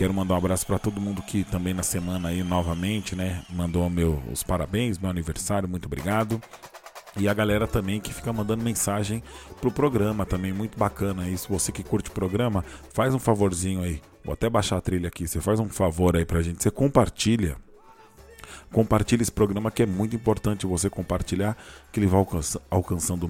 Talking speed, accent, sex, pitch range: 190 wpm, Brazilian, male, 90-110 Hz